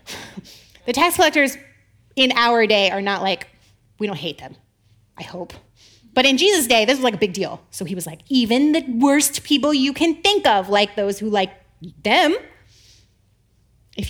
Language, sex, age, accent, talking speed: English, female, 30-49, American, 185 wpm